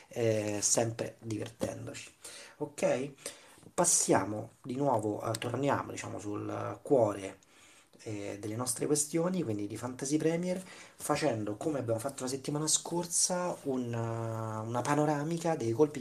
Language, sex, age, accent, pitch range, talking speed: Italian, male, 30-49, native, 110-150 Hz, 120 wpm